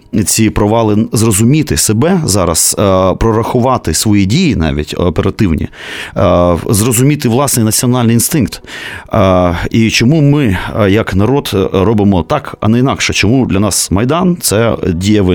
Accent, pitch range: native, 95-120 Hz